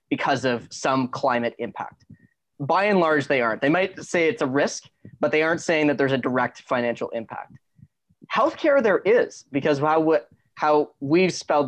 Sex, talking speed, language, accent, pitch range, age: male, 170 wpm, English, American, 125-160 Hz, 20-39